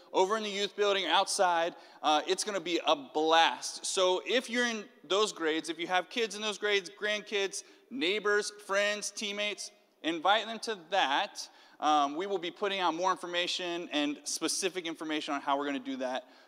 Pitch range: 140-205 Hz